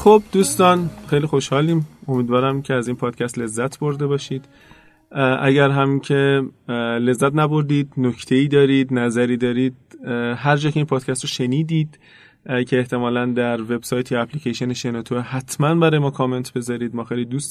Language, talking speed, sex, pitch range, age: Persian, 150 wpm, male, 125-150 Hz, 30-49